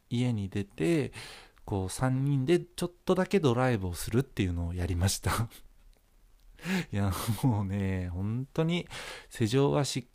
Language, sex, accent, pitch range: Japanese, male, native, 100-150 Hz